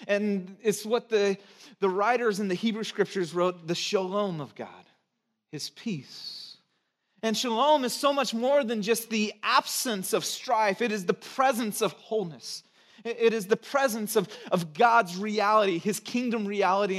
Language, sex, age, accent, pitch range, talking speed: English, male, 30-49, American, 180-225 Hz, 165 wpm